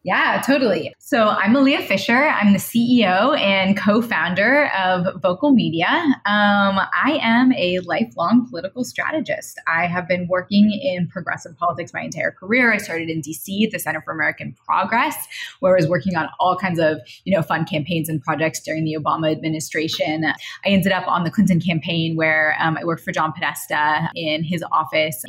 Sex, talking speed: female, 180 wpm